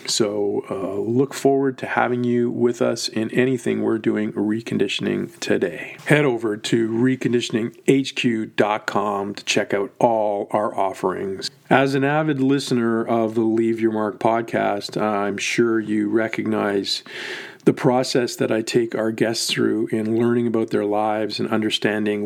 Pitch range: 110-125 Hz